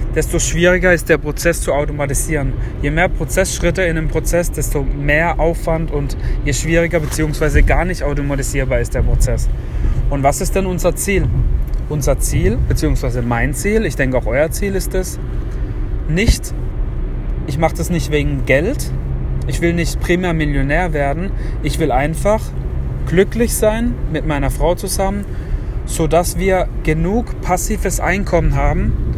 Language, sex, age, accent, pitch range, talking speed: German, male, 30-49, German, 130-170 Hz, 150 wpm